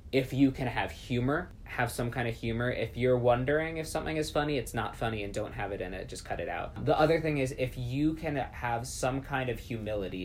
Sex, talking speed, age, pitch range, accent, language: male, 245 wpm, 20-39, 105-125 Hz, American, English